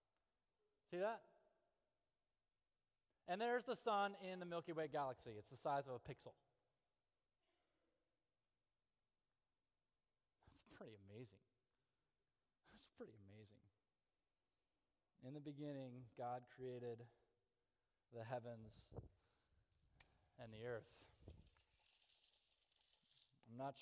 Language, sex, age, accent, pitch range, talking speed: English, male, 30-49, American, 115-160 Hz, 90 wpm